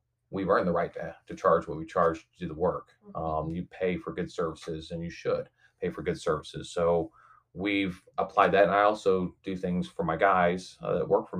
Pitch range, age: 85-95 Hz, 30-49